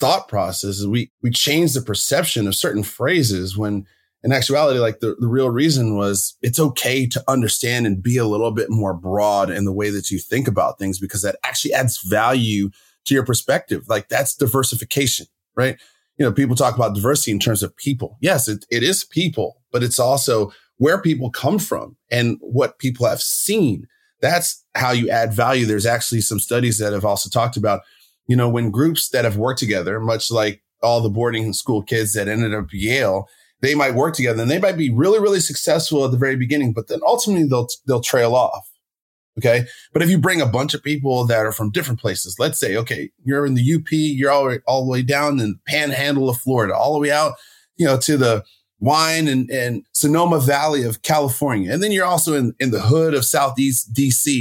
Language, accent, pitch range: English, American, 110-145 Hz